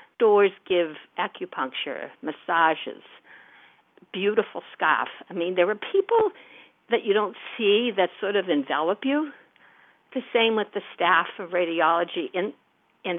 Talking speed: 130 wpm